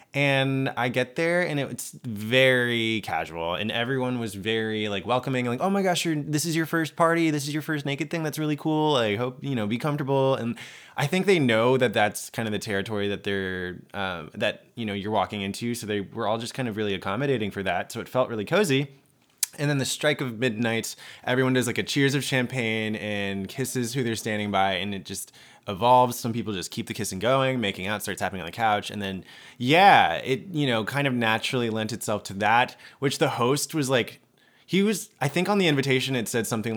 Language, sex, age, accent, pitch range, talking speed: English, male, 20-39, American, 110-150 Hz, 225 wpm